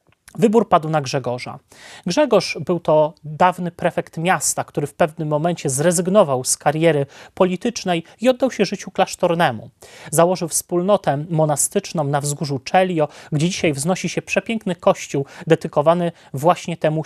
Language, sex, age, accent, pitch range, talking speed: Polish, male, 30-49, native, 145-185 Hz, 135 wpm